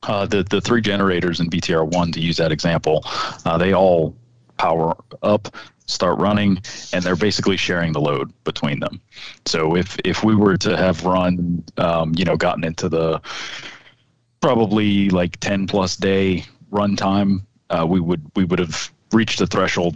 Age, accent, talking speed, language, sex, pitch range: 30-49, American, 170 wpm, English, male, 80-100 Hz